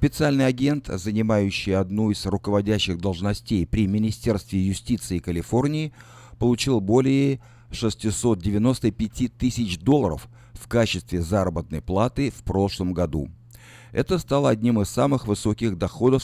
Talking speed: 110 wpm